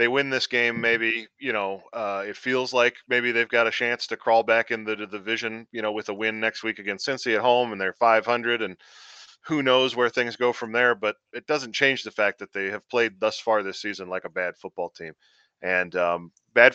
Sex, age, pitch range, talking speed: male, 20-39, 105-125 Hz, 235 wpm